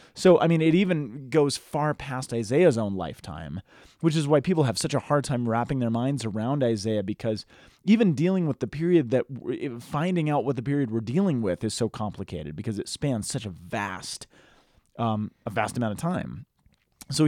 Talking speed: 200 wpm